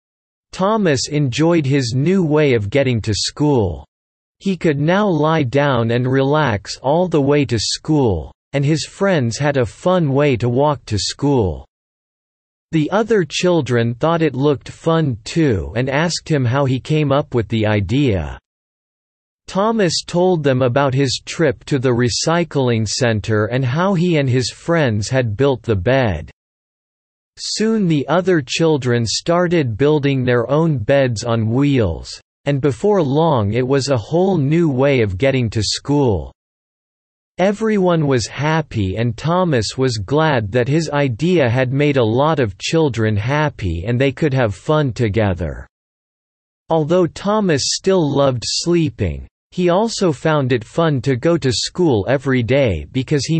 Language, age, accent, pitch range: Danish, 50-69, American, 115-160 Hz